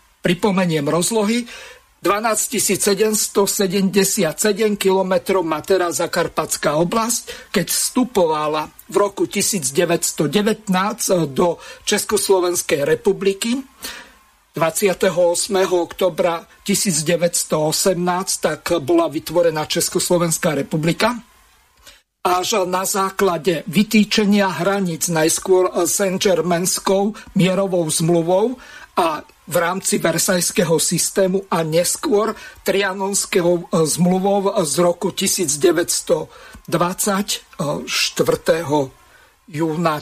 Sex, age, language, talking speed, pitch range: male, 50-69, Slovak, 70 wpm, 170-205 Hz